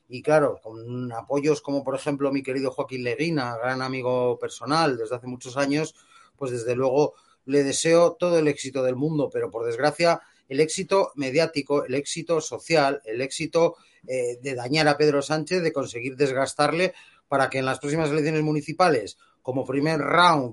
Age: 30-49